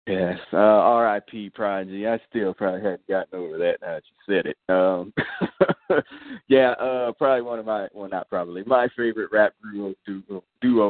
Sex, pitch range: male, 110-130 Hz